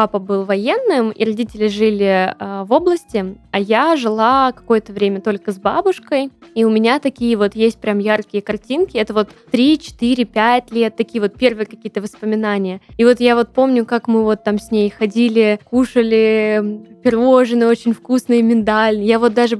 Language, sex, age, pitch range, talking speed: Russian, female, 10-29, 215-255 Hz, 170 wpm